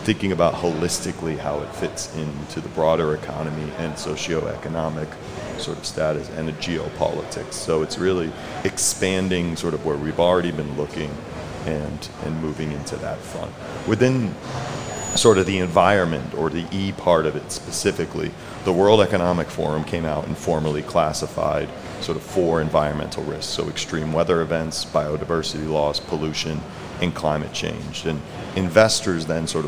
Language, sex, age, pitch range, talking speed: Dutch, male, 30-49, 75-90 Hz, 150 wpm